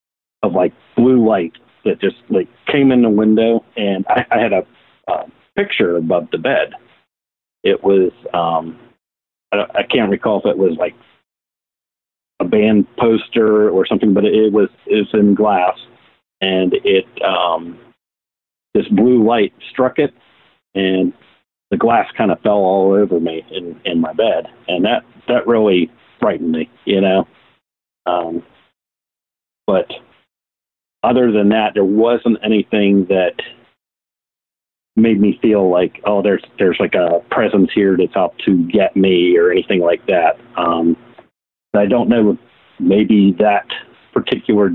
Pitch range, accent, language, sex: 90-110 Hz, American, English, male